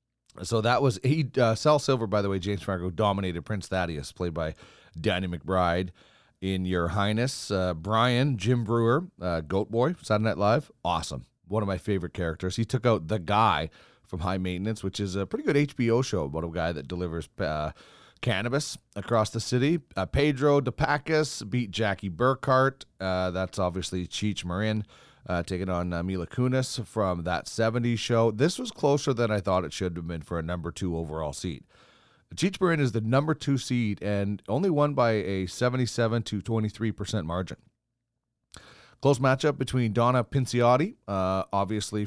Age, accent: 30-49, American